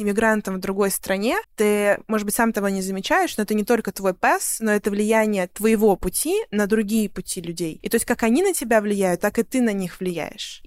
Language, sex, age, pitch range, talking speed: Russian, female, 20-39, 190-220 Hz, 225 wpm